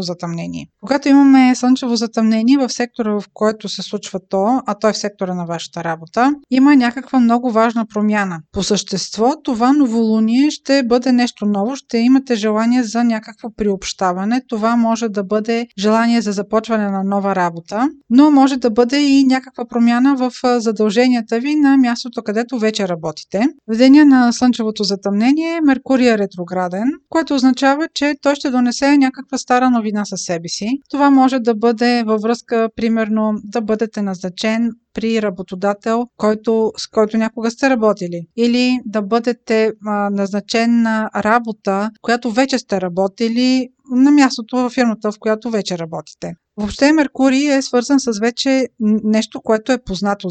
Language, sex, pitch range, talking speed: Bulgarian, female, 210-255 Hz, 155 wpm